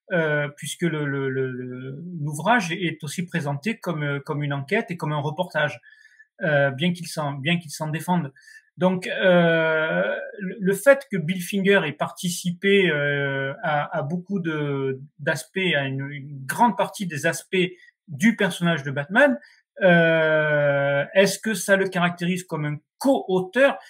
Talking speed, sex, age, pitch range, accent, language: 155 wpm, male, 40-59, 150-215 Hz, French, French